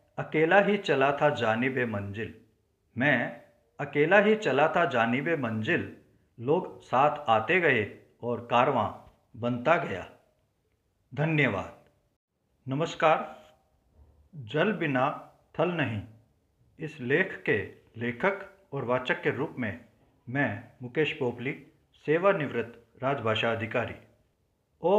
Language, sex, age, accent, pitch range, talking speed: Hindi, male, 50-69, native, 115-160 Hz, 105 wpm